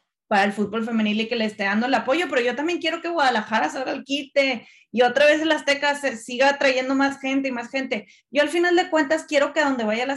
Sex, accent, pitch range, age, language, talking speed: female, Mexican, 185-265 Hz, 20-39, Spanish, 260 wpm